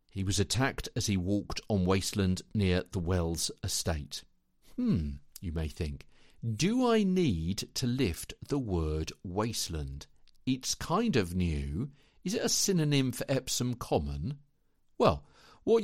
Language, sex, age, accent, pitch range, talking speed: English, male, 50-69, British, 90-135 Hz, 140 wpm